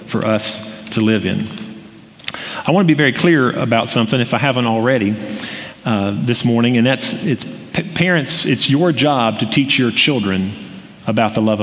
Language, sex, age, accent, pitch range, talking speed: English, male, 40-59, American, 115-150 Hz, 170 wpm